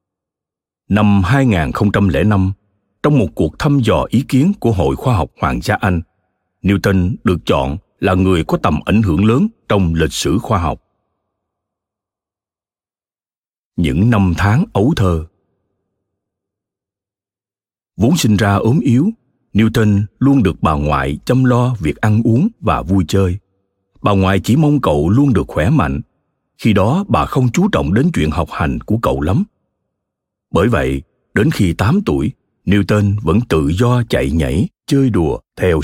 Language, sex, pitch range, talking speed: Vietnamese, male, 95-120 Hz, 150 wpm